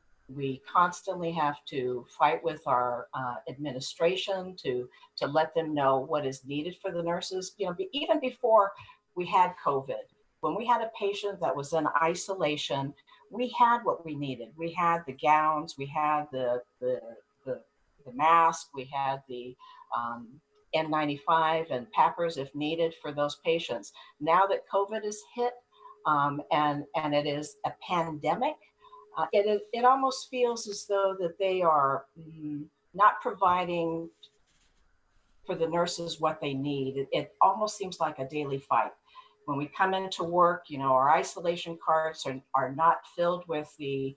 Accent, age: American, 50-69